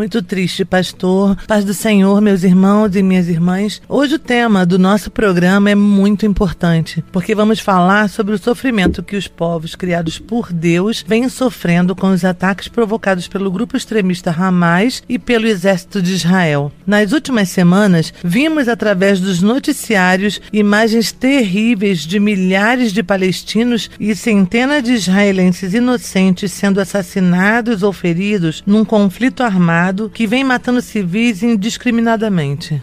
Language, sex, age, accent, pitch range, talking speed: Portuguese, female, 40-59, Brazilian, 185-230 Hz, 140 wpm